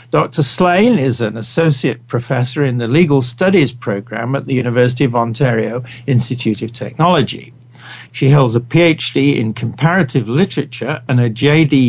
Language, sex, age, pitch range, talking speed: English, male, 60-79, 120-145 Hz, 145 wpm